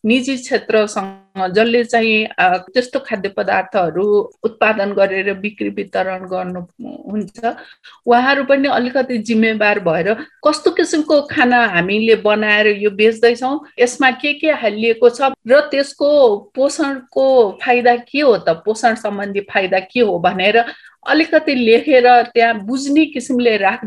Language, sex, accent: English, female, Indian